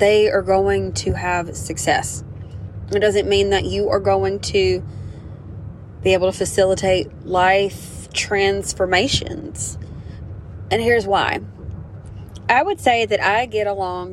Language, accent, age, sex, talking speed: English, American, 20-39, female, 125 wpm